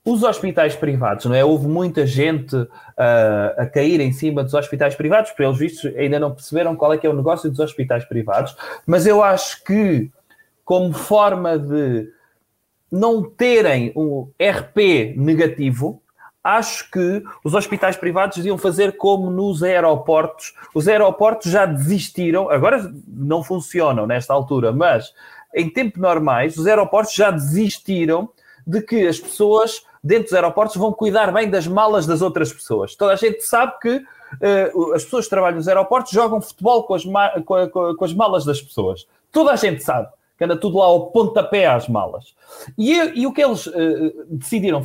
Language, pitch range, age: Portuguese, 155-215 Hz, 20-39